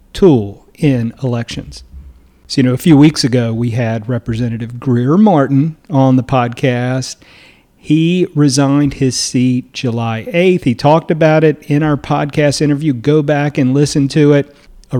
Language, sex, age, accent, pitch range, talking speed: English, male, 40-59, American, 130-170 Hz, 155 wpm